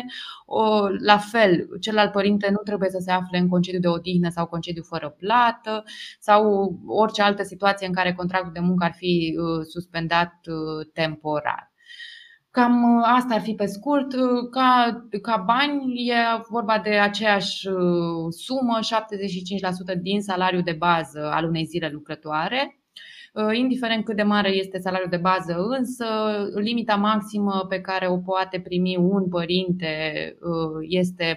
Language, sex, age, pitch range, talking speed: Romanian, female, 20-39, 170-215 Hz, 140 wpm